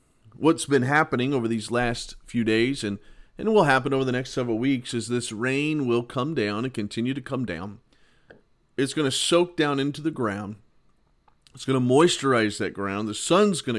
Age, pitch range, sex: 40-59, 110-140 Hz, male